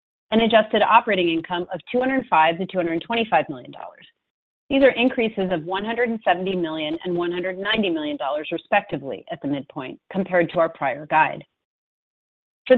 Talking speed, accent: 130 wpm, American